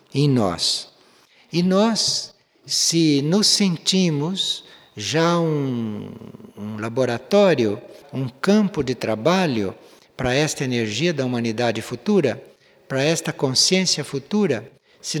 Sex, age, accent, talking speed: male, 60-79, Brazilian, 105 wpm